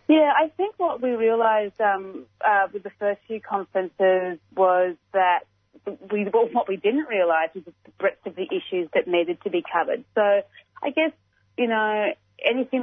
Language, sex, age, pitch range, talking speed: English, female, 30-49, 170-205 Hz, 175 wpm